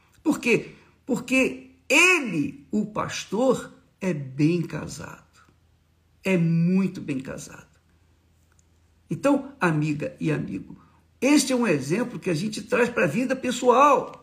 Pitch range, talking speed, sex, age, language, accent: 150-240 Hz, 120 wpm, male, 60-79, Portuguese, Brazilian